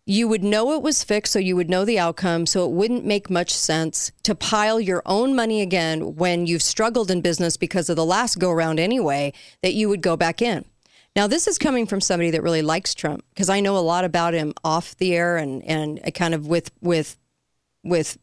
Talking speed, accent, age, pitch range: 225 wpm, American, 40-59, 165-215 Hz